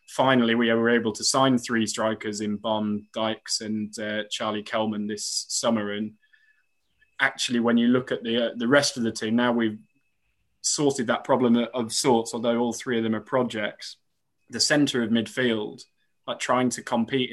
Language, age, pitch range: English, 20-39, 110-125 Hz